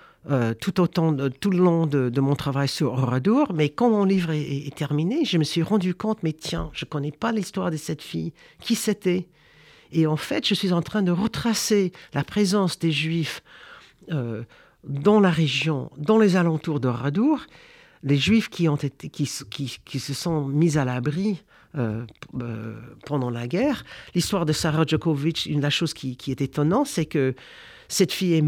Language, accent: French, French